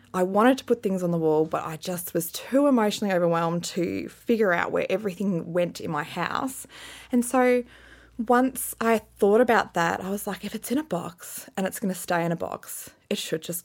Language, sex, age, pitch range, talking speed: English, female, 20-39, 175-225 Hz, 220 wpm